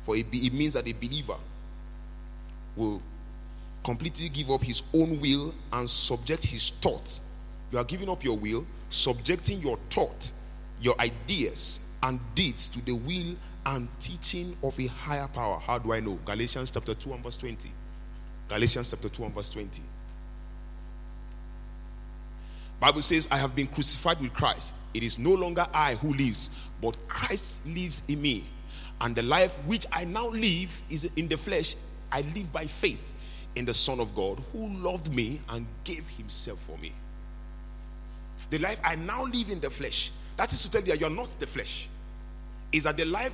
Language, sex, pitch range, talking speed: English, male, 110-165 Hz, 175 wpm